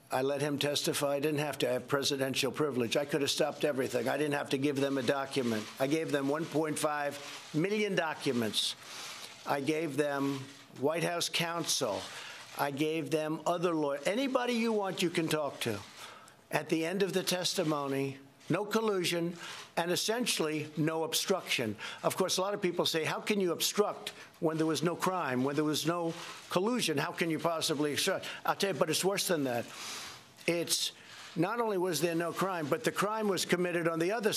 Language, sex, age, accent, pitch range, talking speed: English, male, 60-79, American, 140-180 Hz, 190 wpm